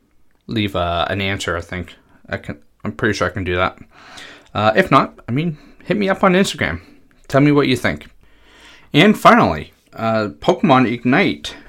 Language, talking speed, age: English, 190 wpm, 30-49